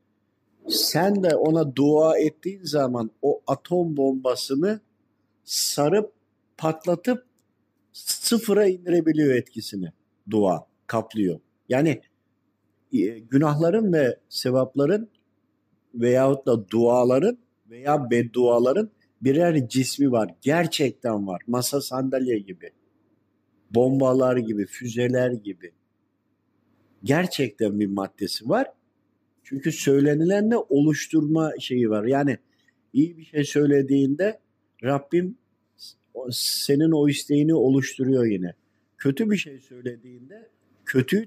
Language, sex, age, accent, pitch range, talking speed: Turkish, male, 50-69, native, 125-160 Hz, 90 wpm